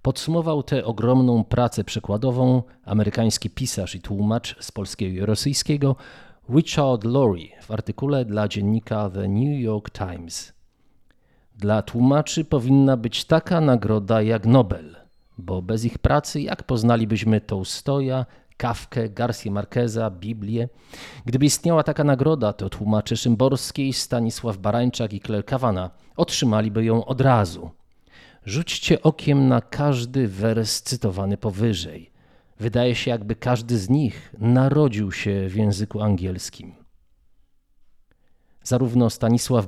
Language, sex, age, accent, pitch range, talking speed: Polish, male, 40-59, native, 105-130 Hz, 115 wpm